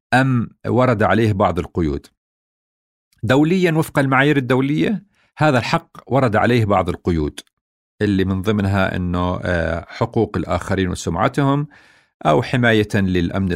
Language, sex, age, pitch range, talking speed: Arabic, male, 50-69, 95-130 Hz, 110 wpm